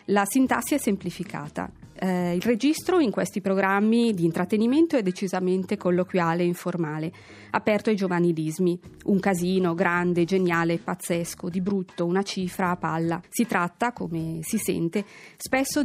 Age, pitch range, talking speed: 30-49, 170-215 Hz, 140 wpm